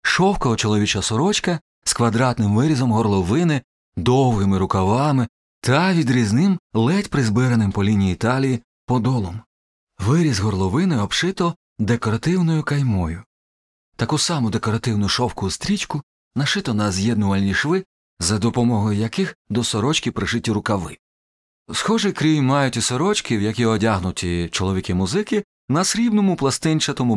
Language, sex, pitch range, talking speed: Ukrainian, male, 105-150 Hz, 110 wpm